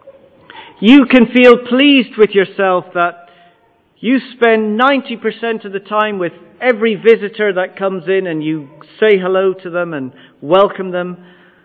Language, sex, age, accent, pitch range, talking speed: English, male, 40-59, British, 160-220 Hz, 145 wpm